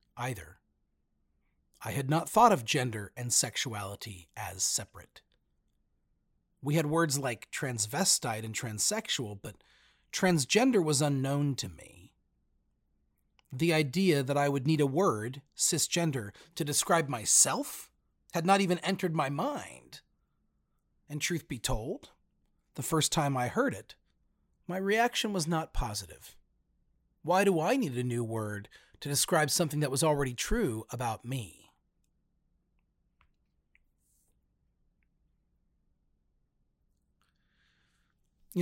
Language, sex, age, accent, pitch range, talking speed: English, male, 40-59, American, 105-160 Hz, 115 wpm